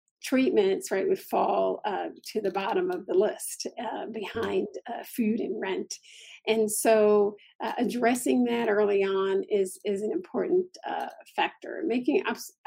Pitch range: 215-315 Hz